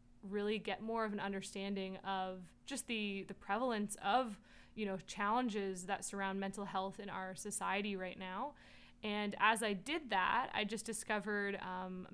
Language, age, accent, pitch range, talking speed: English, 20-39, American, 195-215 Hz, 165 wpm